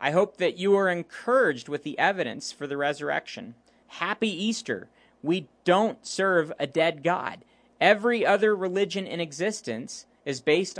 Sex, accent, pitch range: male, American, 155-210 Hz